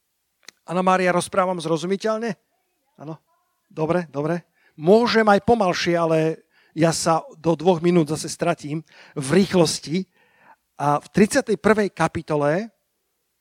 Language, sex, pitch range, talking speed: Slovak, male, 155-195 Hz, 105 wpm